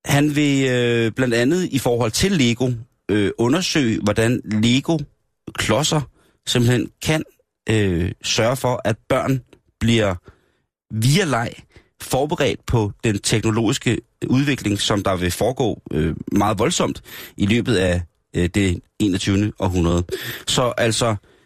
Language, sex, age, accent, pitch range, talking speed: Danish, male, 30-49, native, 100-130 Hz, 125 wpm